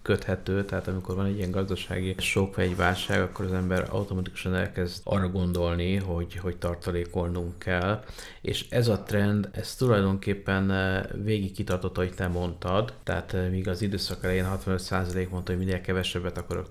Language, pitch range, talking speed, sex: Hungarian, 90-100 Hz, 160 wpm, male